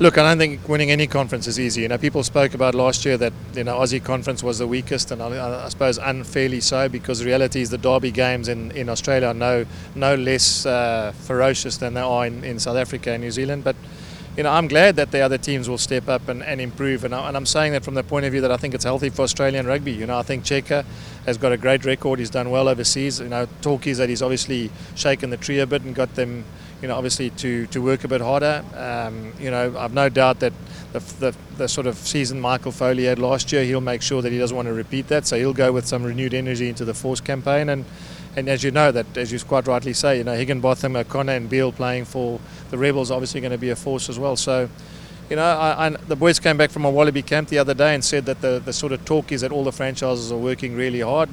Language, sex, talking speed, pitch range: English, male, 275 wpm, 125-140 Hz